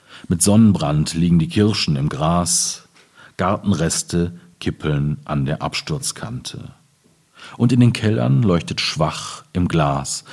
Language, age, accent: German, 40-59, German